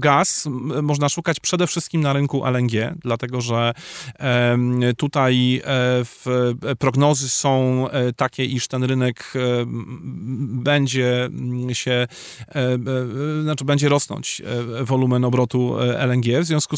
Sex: male